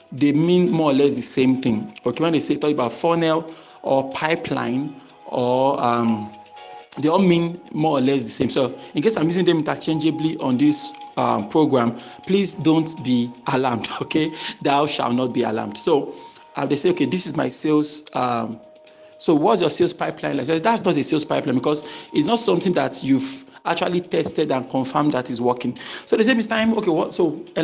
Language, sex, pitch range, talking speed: English, male, 135-185 Hz, 200 wpm